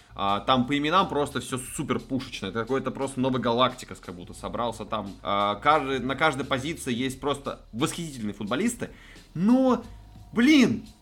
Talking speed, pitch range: 135 wpm, 120-165 Hz